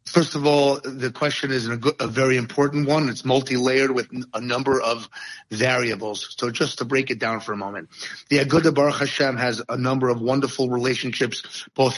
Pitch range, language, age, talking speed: 125-145 Hz, English, 30-49, 195 wpm